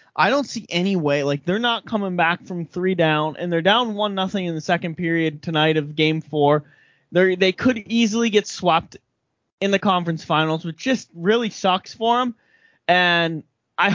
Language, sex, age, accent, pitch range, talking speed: English, male, 20-39, American, 155-195 Hz, 190 wpm